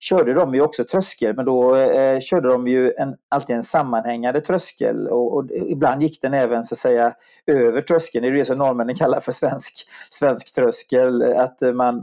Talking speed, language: 190 wpm, Swedish